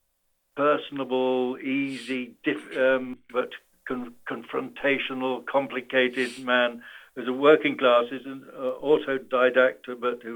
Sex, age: male, 60-79